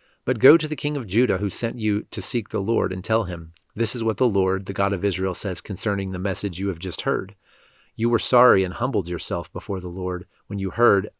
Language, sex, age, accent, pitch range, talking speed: English, male, 40-59, American, 95-110 Hz, 245 wpm